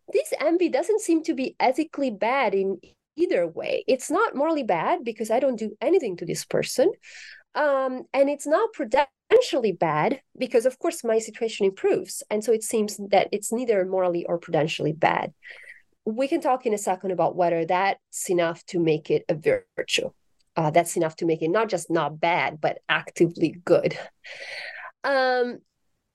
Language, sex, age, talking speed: English, female, 30-49, 170 wpm